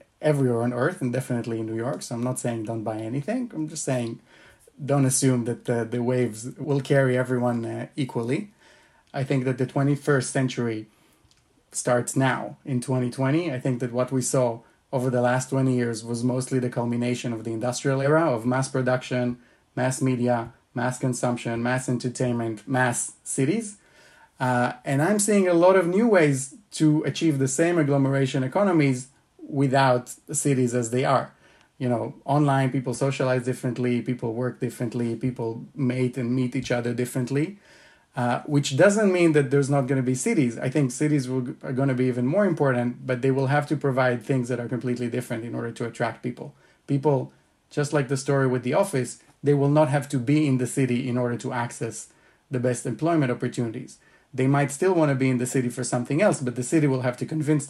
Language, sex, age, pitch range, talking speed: English, male, 30-49, 125-140 Hz, 190 wpm